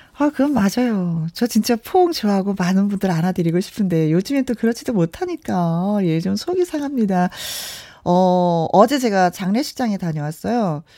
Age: 40-59